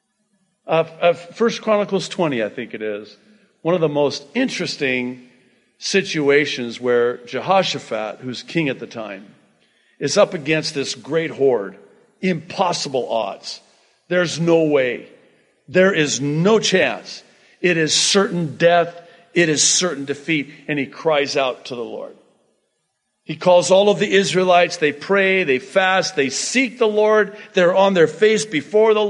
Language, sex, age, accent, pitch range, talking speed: English, male, 50-69, American, 145-205 Hz, 150 wpm